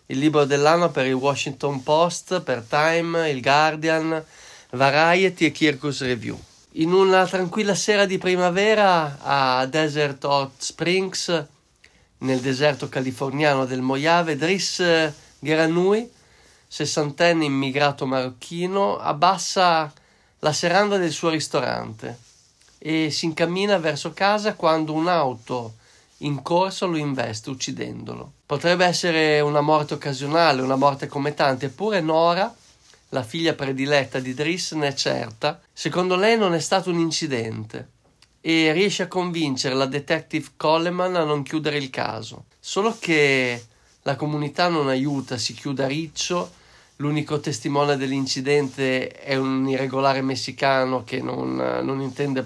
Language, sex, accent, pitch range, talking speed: Italian, male, native, 135-170 Hz, 130 wpm